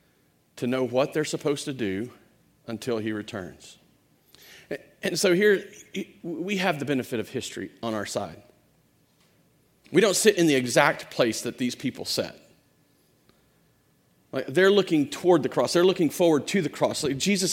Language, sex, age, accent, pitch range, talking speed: English, male, 40-59, American, 160-215 Hz, 160 wpm